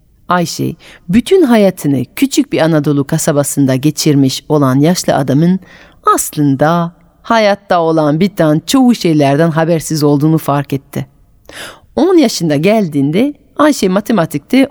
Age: 40-59